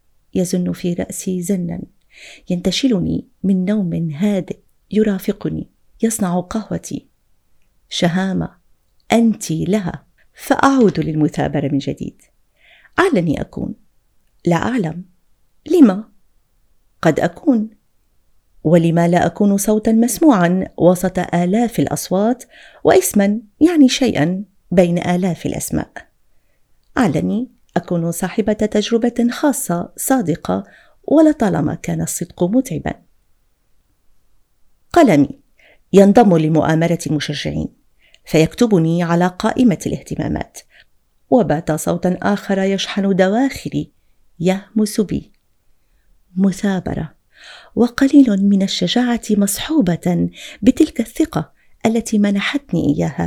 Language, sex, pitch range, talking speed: Arabic, female, 175-230 Hz, 85 wpm